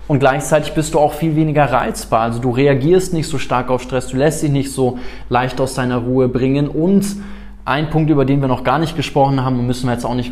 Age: 20-39